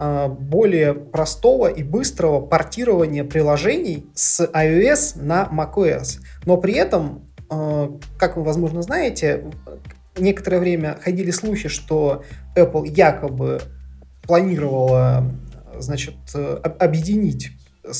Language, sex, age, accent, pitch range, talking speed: Russian, male, 20-39, native, 145-180 Hz, 90 wpm